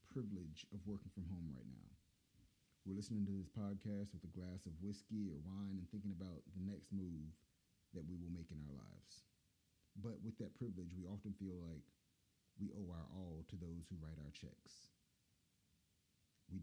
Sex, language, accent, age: male, English, American, 30-49